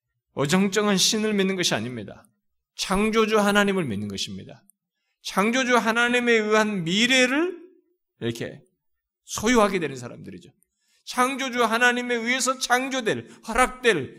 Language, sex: Korean, male